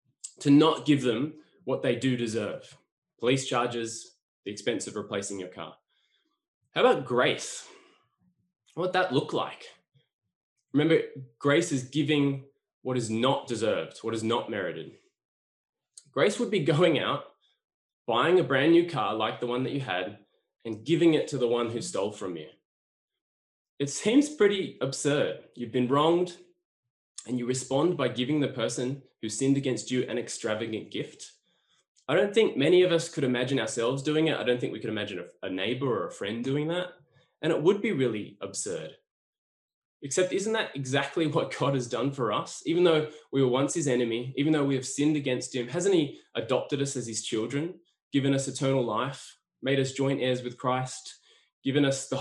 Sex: male